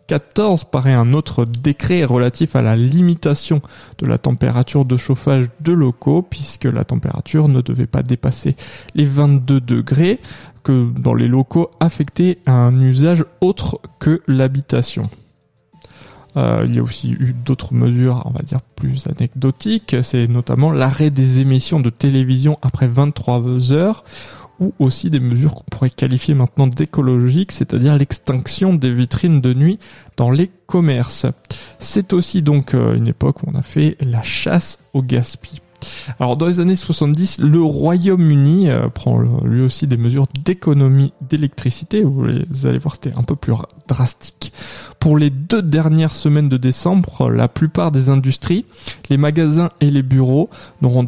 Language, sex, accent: French, male, French